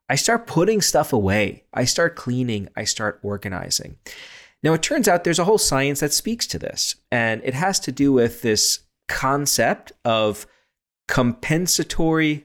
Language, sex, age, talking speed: English, male, 40-59, 160 wpm